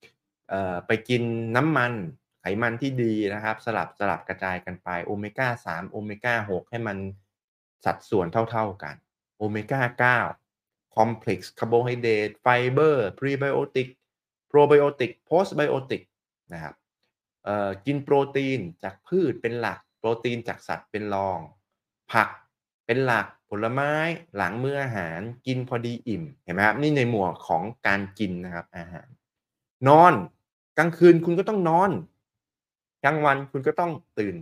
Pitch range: 100-135 Hz